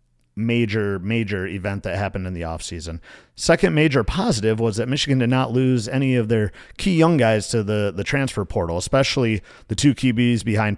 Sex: male